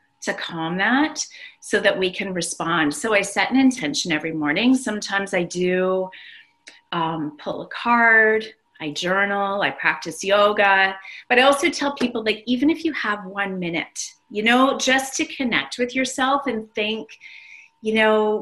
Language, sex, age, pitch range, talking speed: English, female, 30-49, 185-255 Hz, 165 wpm